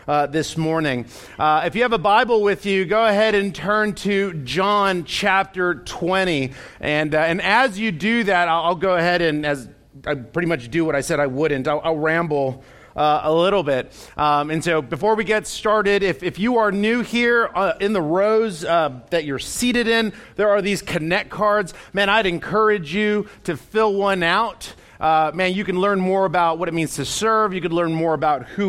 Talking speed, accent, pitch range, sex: 220 wpm, American, 160-205 Hz, male